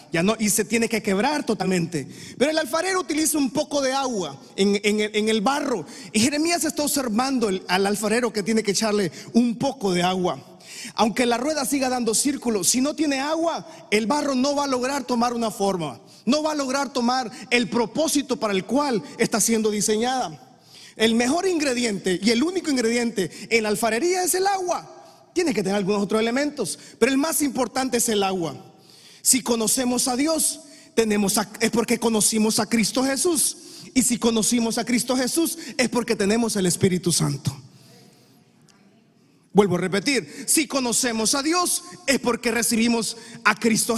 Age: 30-49